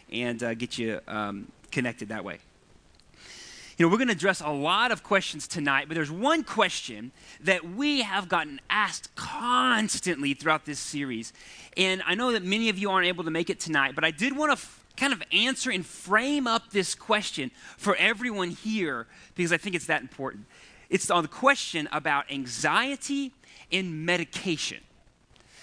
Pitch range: 140-210 Hz